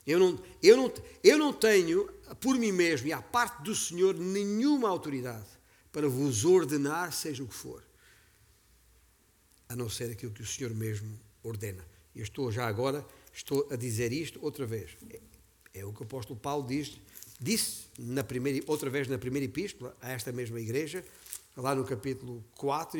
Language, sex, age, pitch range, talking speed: Portuguese, male, 50-69, 110-155 Hz, 155 wpm